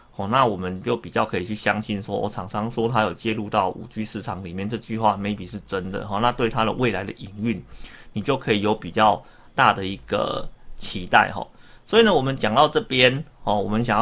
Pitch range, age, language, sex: 105-135 Hz, 30-49, Chinese, male